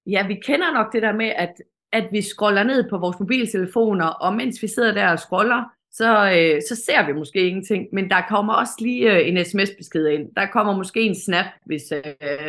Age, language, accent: 30-49, Danish, native